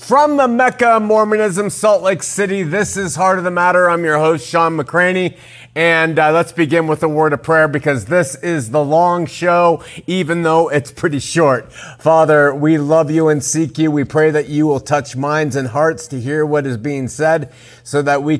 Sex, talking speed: male, 205 wpm